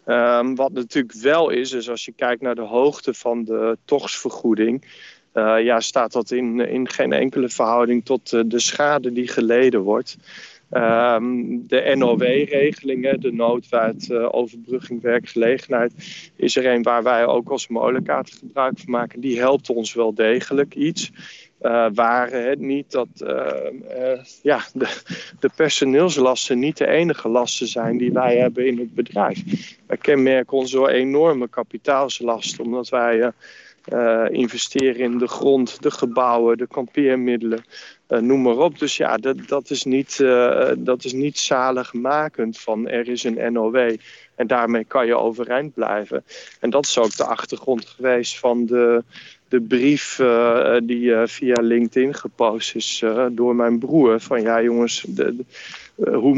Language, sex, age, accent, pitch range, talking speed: Dutch, male, 40-59, Dutch, 115-130 Hz, 160 wpm